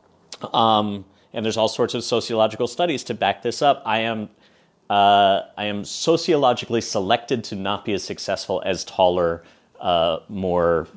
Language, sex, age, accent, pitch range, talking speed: English, male, 30-49, American, 100-135 Hz, 155 wpm